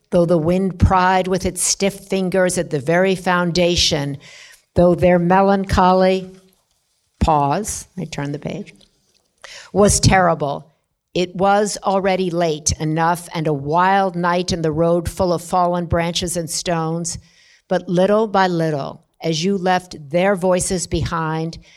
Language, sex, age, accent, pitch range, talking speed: English, female, 50-69, American, 155-185 Hz, 140 wpm